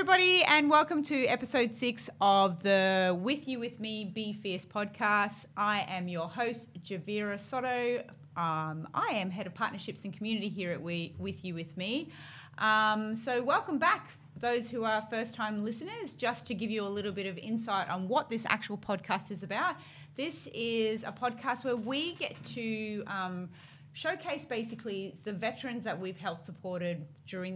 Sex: female